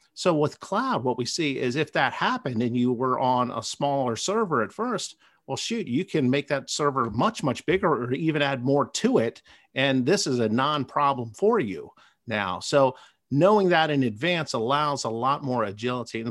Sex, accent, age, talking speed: male, American, 50-69, 200 wpm